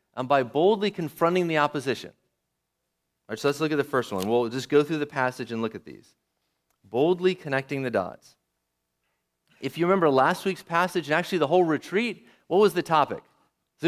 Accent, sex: American, male